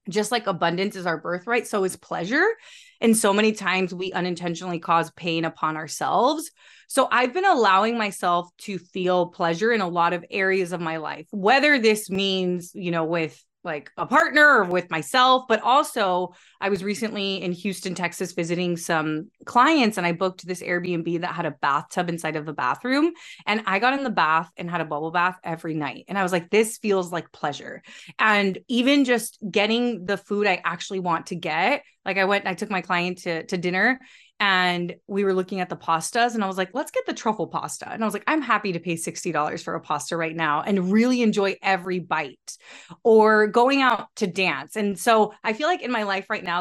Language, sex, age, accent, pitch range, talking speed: English, female, 20-39, American, 175-220 Hz, 210 wpm